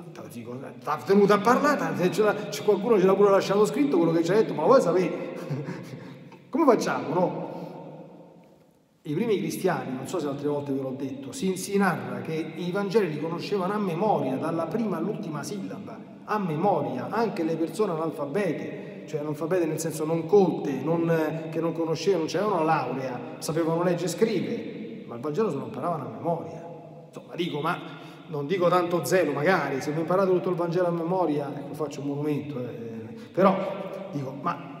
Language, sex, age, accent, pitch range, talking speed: Italian, male, 40-59, native, 150-195 Hz, 170 wpm